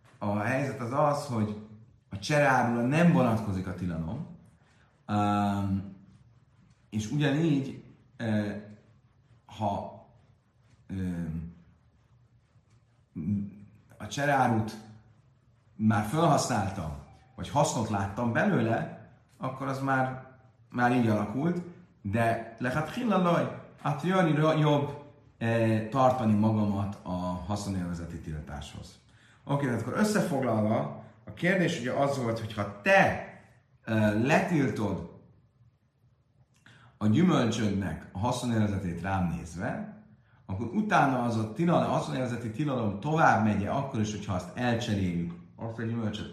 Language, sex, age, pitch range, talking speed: Hungarian, male, 30-49, 100-130 Hz, 100 wpm